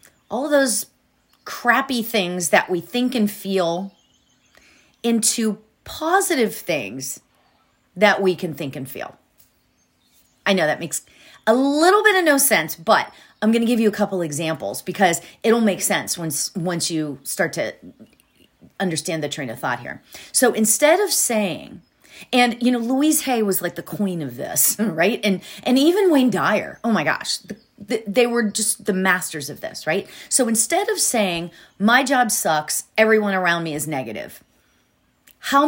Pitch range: 180-245 Hz